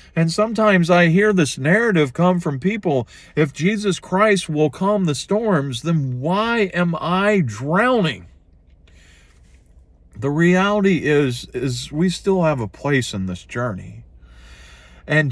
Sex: male